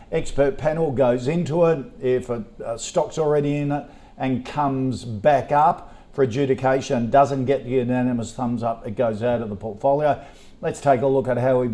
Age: 50-69